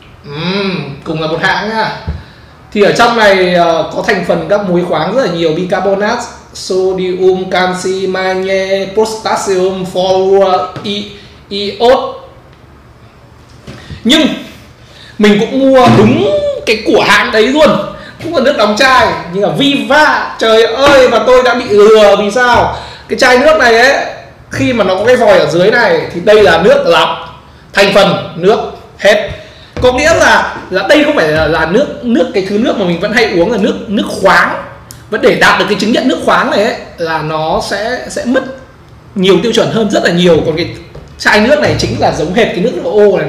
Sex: male